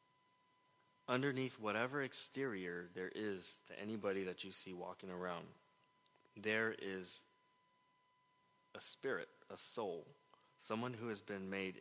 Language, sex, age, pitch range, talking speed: English, male, 20-39, 105-150 Hz, 115 wpm